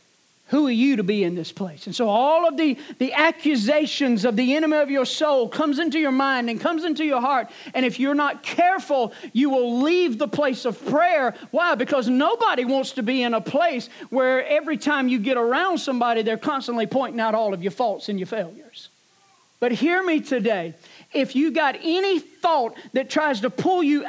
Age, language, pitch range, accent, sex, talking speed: 40-59, English, 230-295 Hz, American, male, 205 wpm